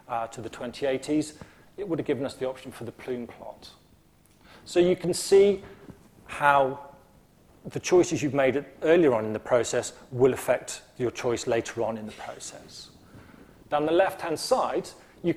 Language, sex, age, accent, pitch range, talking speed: English, male, 40-59, British, 125-180 Hz, 170 wpm